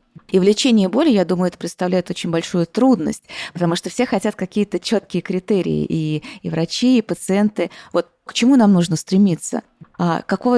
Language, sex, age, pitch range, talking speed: Russian, female, 20-39, 170-210 Hz, 170 wpm